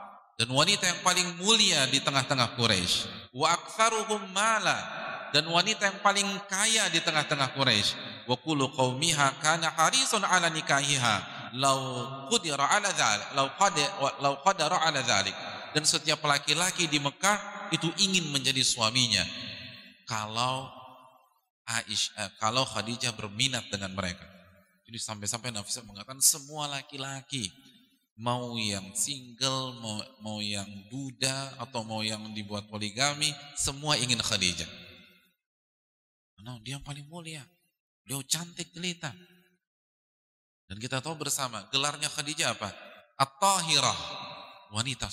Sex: male